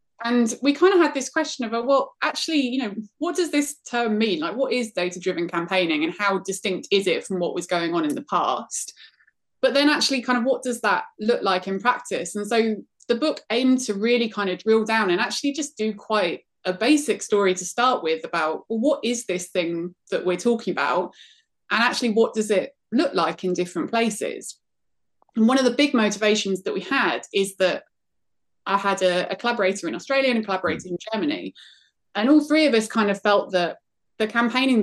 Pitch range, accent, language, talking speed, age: 185-255 Hz, British, English, 210 wpm, 20-39